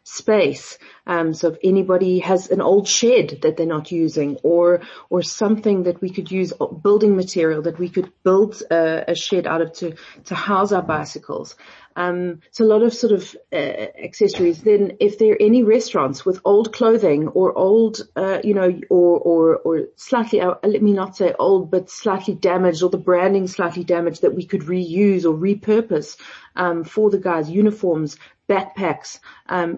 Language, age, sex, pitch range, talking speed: English, 40-59, female, 170-205 Hz, 180 wpm